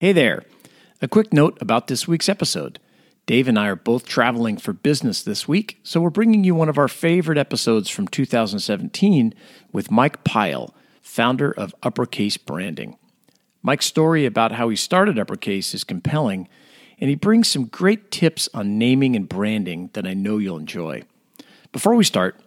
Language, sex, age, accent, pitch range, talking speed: English, male, 50-69, American, 115-175 Hz, 170 wpm